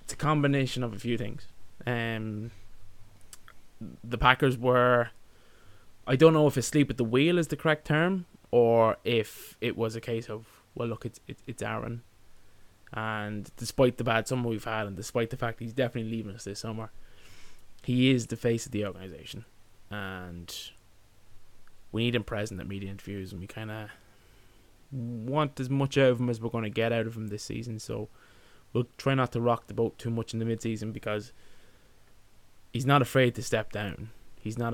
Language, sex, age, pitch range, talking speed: English, male, 20-39, 105-125 Hz, 190 wpm